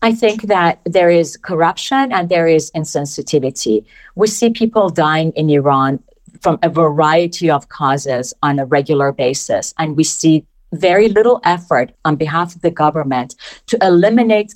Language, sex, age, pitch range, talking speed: English, female, 50-69, 155-225 Hz, 155 wpm